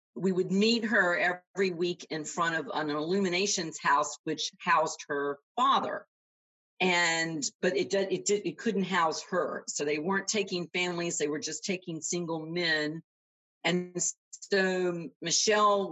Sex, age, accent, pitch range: female, 50-69, American, 160-200 Hz